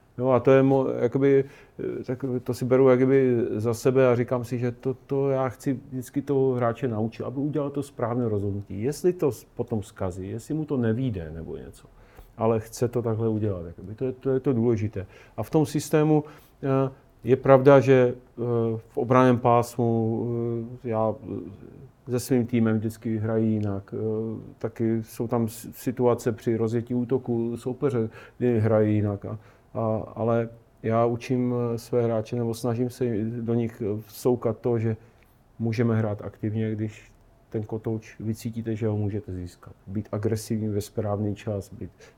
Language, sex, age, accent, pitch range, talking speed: Czech, male, 40-59, native, 110-130 Hz, 160 wpm